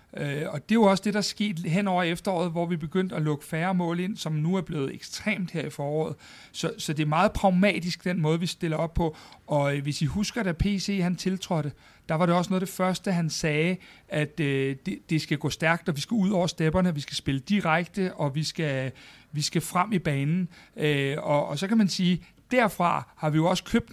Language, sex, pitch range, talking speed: Danish, male, 155-185 Hz, 245 wpm